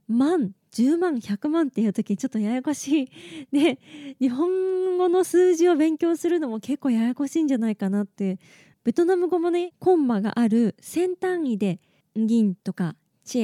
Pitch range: 210-295 Hz